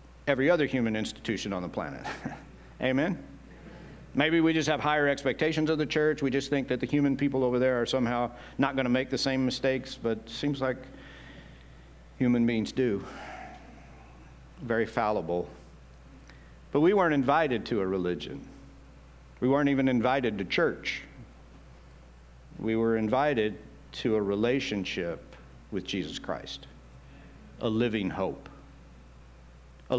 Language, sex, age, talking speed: English, male, 60-79, 140 wpm